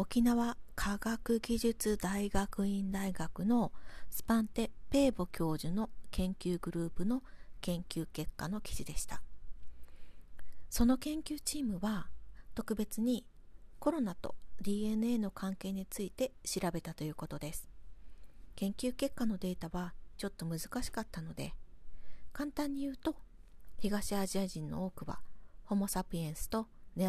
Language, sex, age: Japanese, female, 40-59